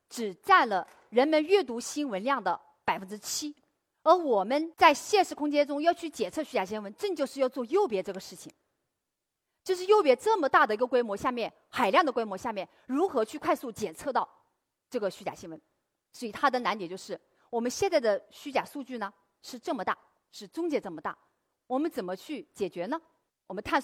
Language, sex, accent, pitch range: Chinese, female, native, 215-330 Hz